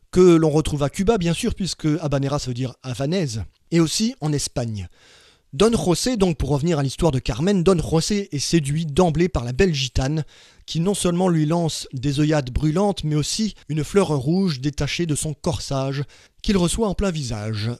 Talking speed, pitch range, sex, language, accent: 190 wpm, 140-170 Hz, male, French, French